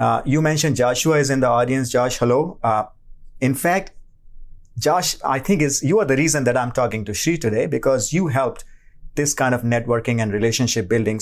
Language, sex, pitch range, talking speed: English, male, 115-150 Hz, 200 wpm